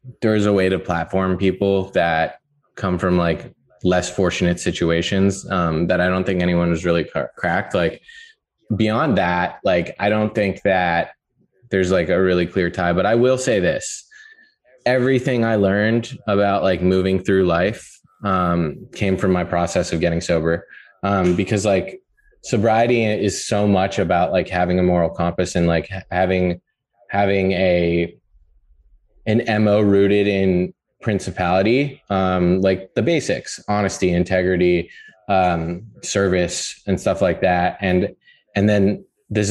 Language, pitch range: English, 90-105 Hz